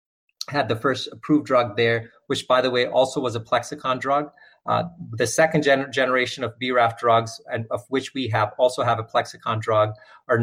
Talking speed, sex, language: 185 wpm, male, English